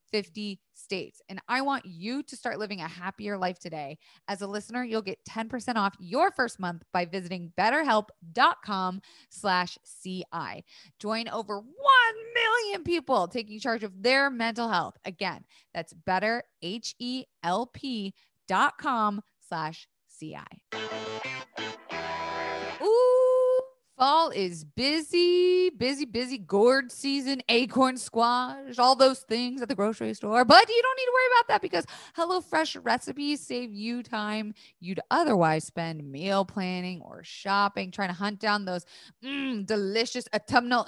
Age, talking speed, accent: 20-39, 130 wpm, American